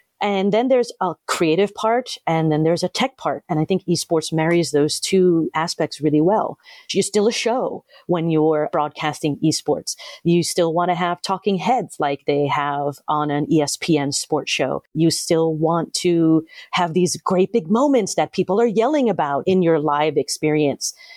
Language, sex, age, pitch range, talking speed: English, female, 40-59, 155-195 Hz, 180 wpm